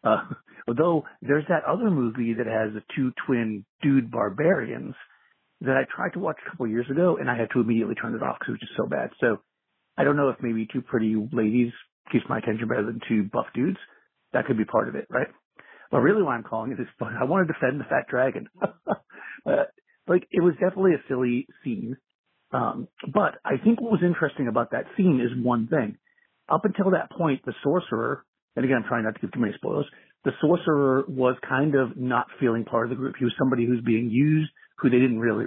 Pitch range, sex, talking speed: 120-155 Hz, male, 225 wpm